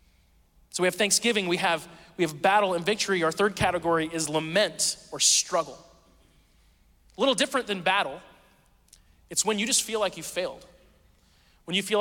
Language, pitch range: English, 155-195 Hz